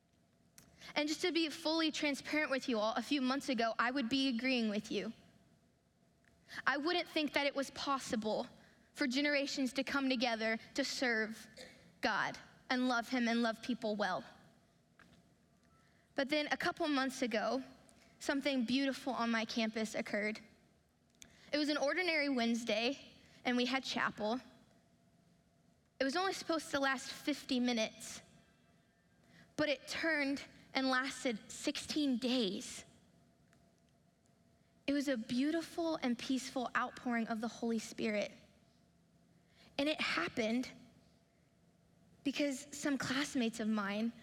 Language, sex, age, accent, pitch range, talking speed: English, female, 10-29, American, 230-280 Hz, 130 wpm